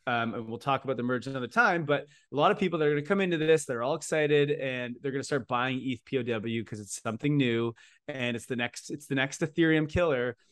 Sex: male